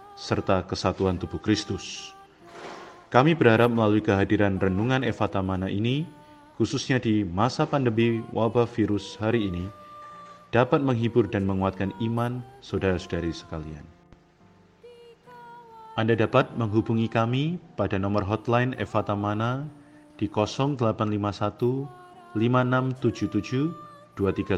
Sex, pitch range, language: male, 105-135 Hz, Indonesian